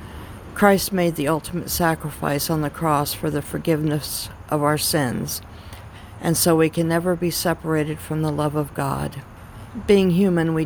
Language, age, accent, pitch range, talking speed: English, 50-69, American, 130-160 Hz, 165 wpm